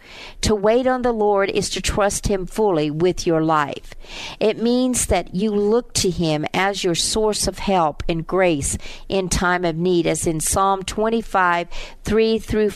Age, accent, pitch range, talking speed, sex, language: 50-69, American, 165-215 Hz, 175 wpm, female, English